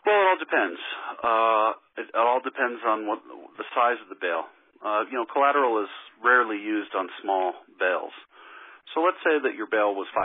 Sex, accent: male, American